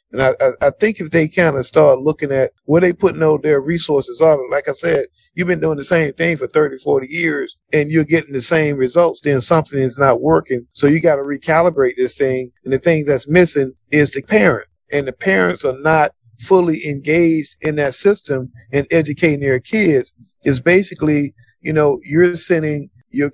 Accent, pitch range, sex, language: American, 135-165 Hz, male, English